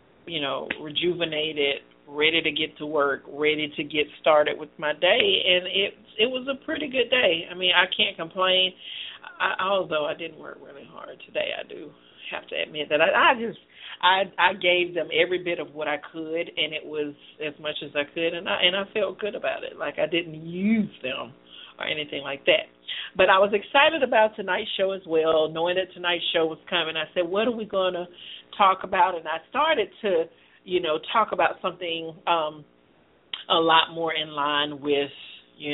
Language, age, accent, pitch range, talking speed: English, 40-59, American, 150-185 Hz, 205 wpm